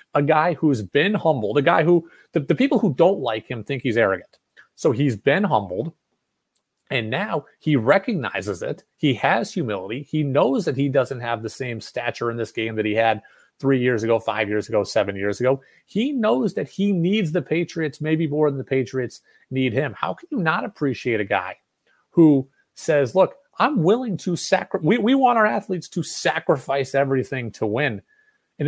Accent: American